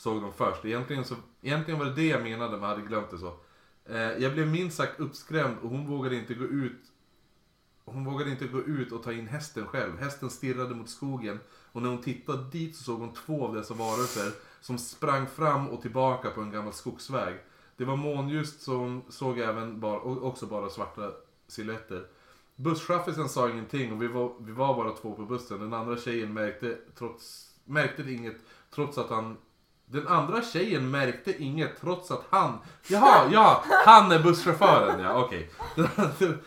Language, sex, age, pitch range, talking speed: Swedish, male, 30-49, 110-140 Hz, 190 wpm